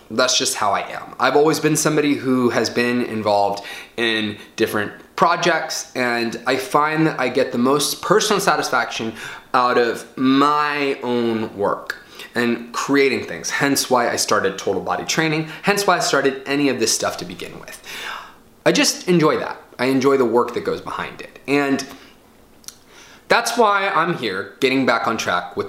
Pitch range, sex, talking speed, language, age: 120-155 Hz, male, 175 wpm, English, 20-39